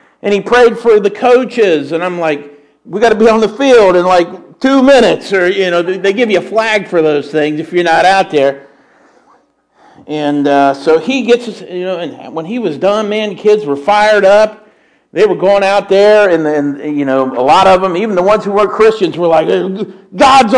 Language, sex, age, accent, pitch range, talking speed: English, male, 50-69, American, 150-215 Hz, 225 wpm